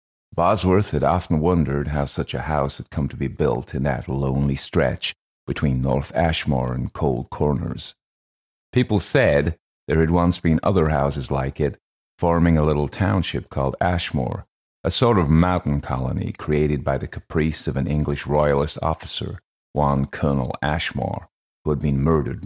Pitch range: 70-85 Hz